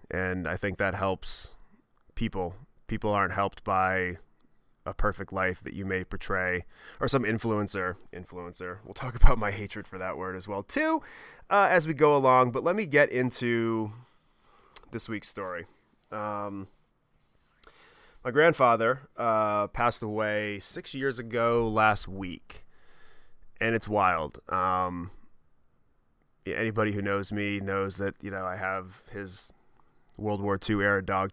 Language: English